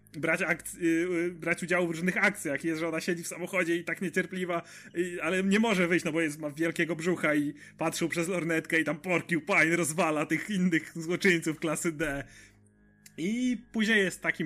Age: 30-49